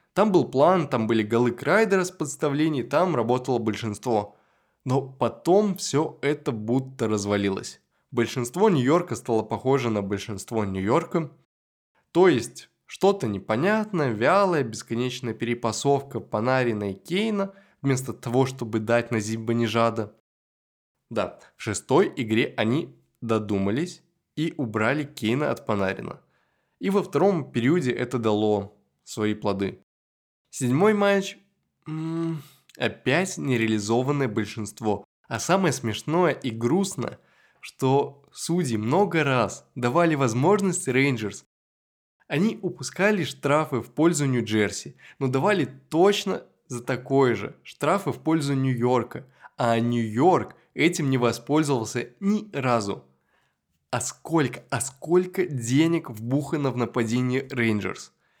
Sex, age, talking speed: male, 20-39, 115 wpm